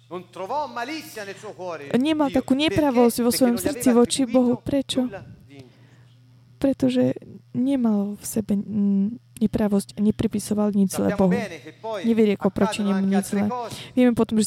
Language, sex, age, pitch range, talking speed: Slovak, female, 30-49, 210-255 Hz, 105 wpm